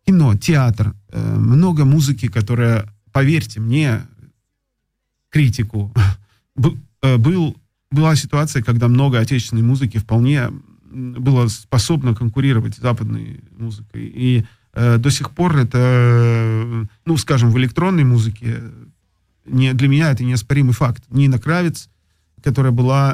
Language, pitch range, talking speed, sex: Russian, 115-145 Hz, 110 wpm, male